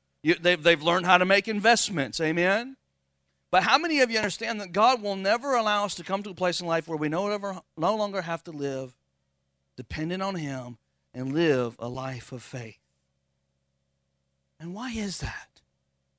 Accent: American